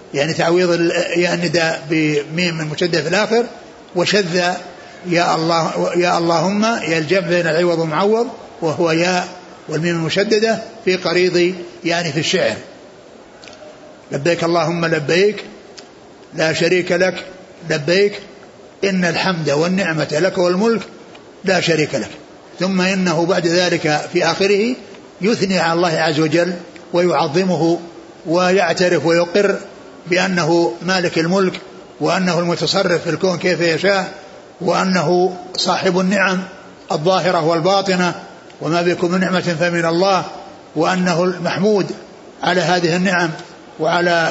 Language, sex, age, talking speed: Arabic, male, 60-79, 110 wpm